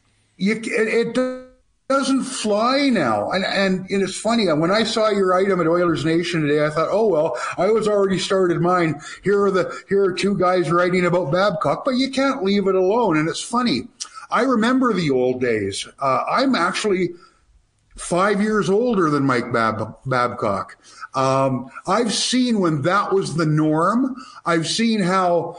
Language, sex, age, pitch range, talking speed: English, male, 50-69, 155-210 Hz, 175 wpm